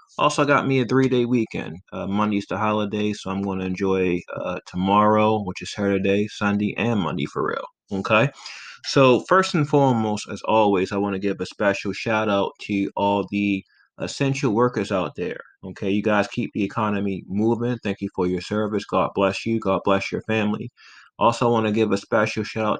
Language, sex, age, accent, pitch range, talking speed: English, male, 20-39, American, 100-115 Hz, 190 wpm